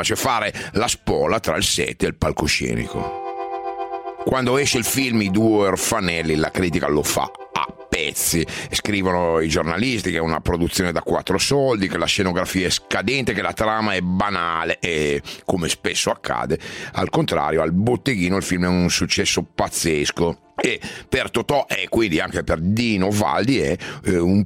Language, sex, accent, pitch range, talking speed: Italian, male, native, 95-120 Hz, 170 wpm